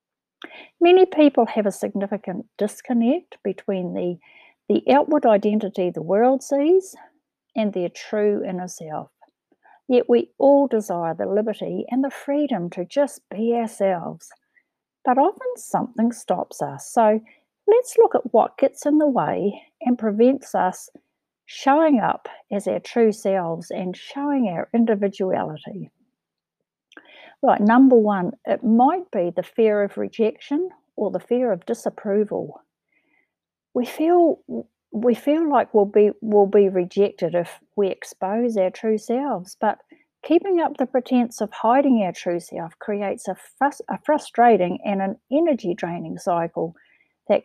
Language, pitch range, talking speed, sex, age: English, 195-275 Hz, 140 wpm, female, 60-79